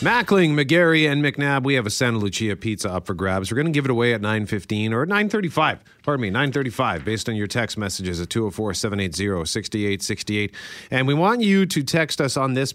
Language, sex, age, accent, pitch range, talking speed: English, male, 40-59, American, 95-130 Hz, 200 wpm